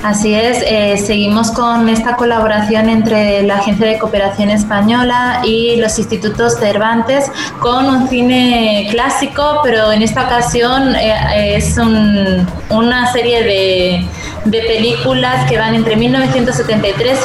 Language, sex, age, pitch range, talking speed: Spanish, female, 20-39, 205-240 Hz, 125 wpm